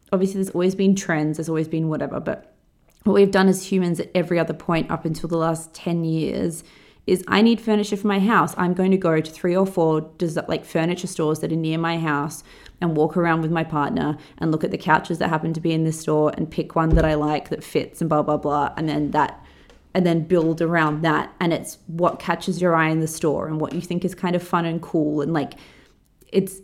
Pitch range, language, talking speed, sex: 155-180 Hz, English, 245 wpm, female